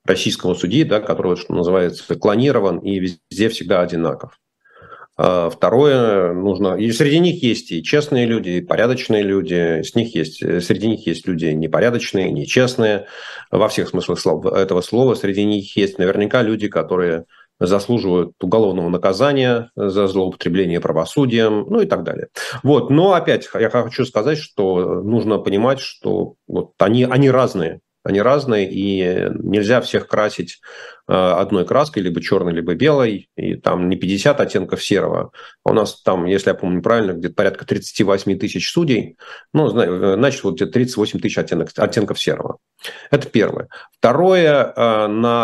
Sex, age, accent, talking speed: male, 40-59, native, 140 wpm